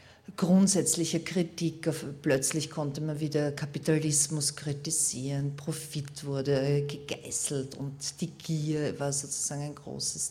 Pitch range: 145-175 Hz